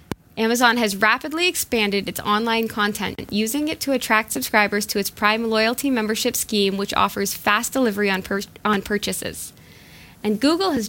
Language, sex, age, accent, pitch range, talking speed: English, female, 10-29, American, 210-245 Hz, 160 wpm